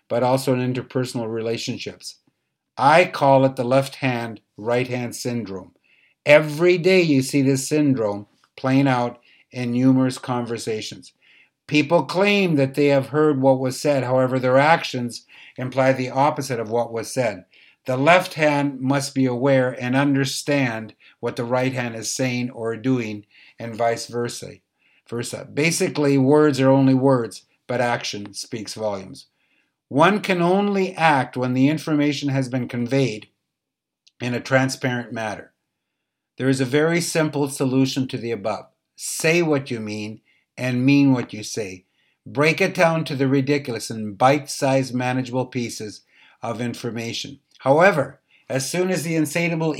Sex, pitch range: male, 120-150 Hz